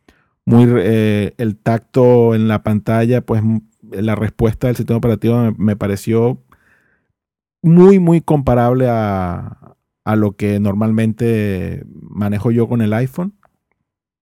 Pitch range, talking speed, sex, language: 105-125 Hz, 120 wpm, male, English